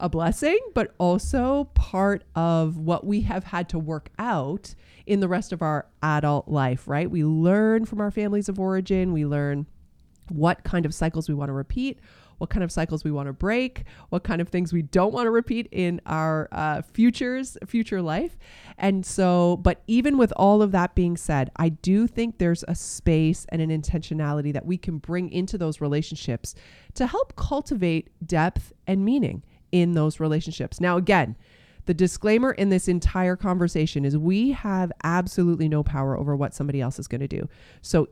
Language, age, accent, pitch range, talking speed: English, 30-49, American, 155-195 Hz, 185 wpm